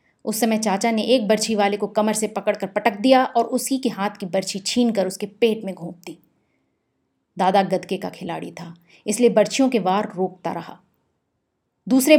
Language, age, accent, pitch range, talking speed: Hindi, 30-49, native, 180-225 Hz, 180 wpm